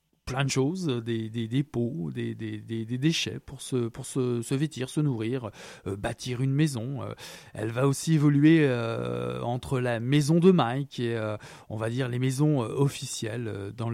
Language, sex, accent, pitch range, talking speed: French, male, French, 115-145 Hz, 200 wpm